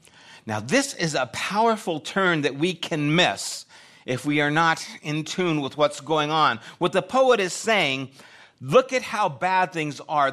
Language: English